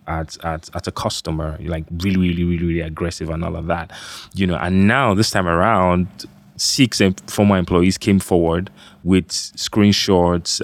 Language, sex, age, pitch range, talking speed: English, male, 20-39, 85-100 Hz, 170 wpm